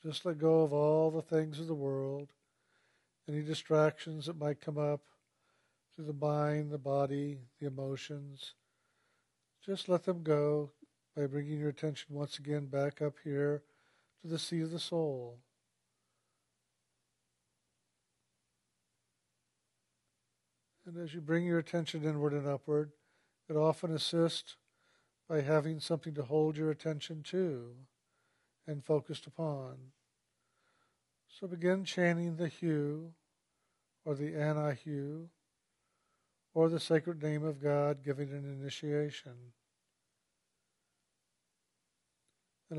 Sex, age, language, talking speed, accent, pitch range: male, 50-69, English, 115 wpm, American, 130-160 Hz